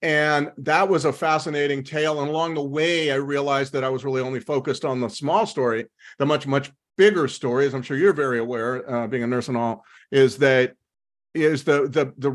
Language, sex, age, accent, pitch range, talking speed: English, male, 50-69, American, 130-150 Hz, 220 wpm